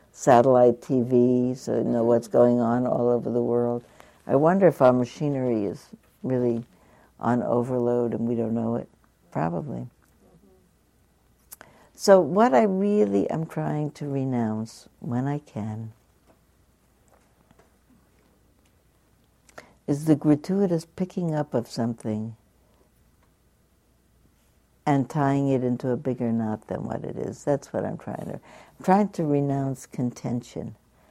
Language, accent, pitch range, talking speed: English, American, 120-165 Hz, 125 wpm